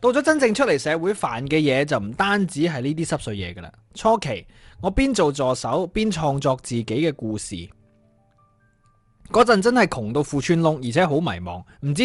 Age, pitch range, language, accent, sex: 20-39, 110-170 Hz, Chinese, native, male